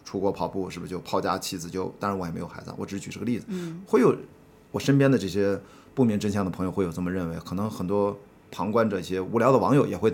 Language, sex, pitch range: Chinese, male, 95-135 Hz